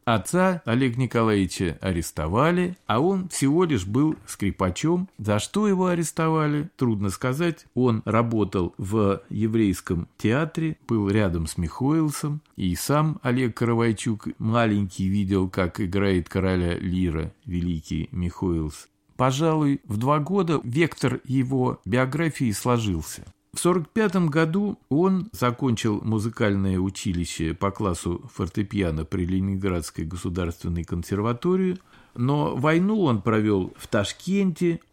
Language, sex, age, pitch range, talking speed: Russian, male, 50-69, 100-140 Hz, 110 wpm